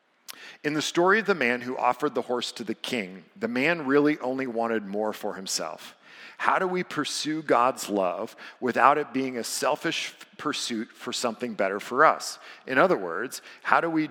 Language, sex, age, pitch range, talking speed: English, male, 50-69, 120-155 Hz, 185 wpm